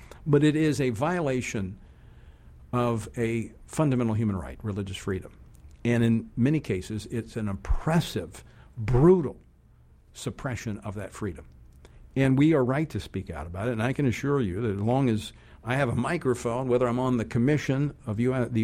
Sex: male